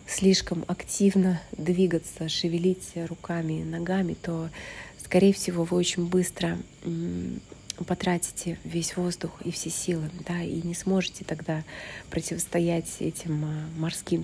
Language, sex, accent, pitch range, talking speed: Russian, female, native, 165-180 Hz, 115 wpm